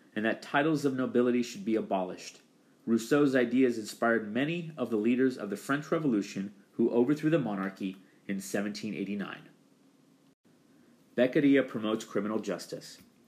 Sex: male